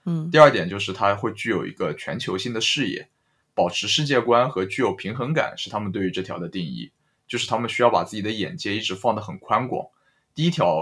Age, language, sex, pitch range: 20-39, Chinese, male, 95-130 Hz